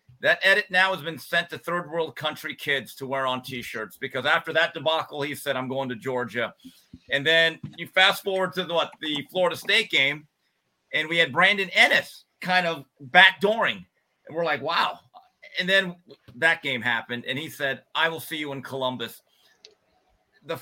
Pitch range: 130-175 Hz